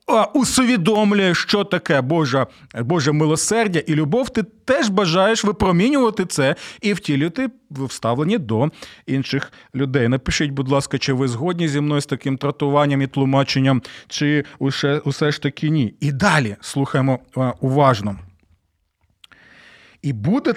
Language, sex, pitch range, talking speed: Ukrainian, male, 140-215 Hz, 125 wpm